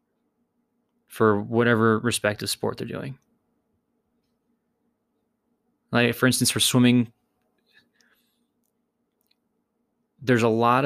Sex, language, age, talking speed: male, English, 20-39, 75 wpm